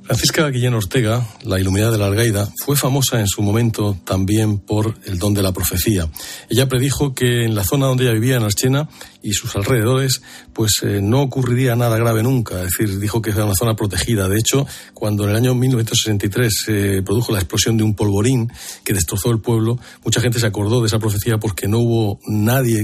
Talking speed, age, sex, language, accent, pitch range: 210 wpm, 40-59, male, Spanish, Spanish, 100-125 Hz